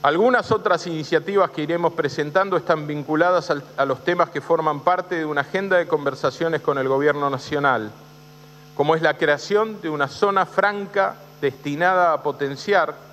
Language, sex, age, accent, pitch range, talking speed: Spanish, male, 40-59, Argentinian, 145-175 Hz, 155 wpm